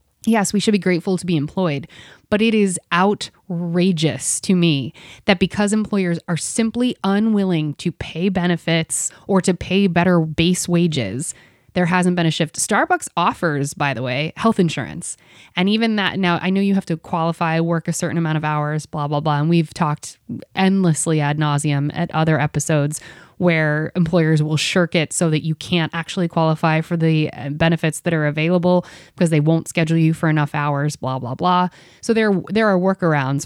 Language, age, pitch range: English, 20-39, 150-180 Hz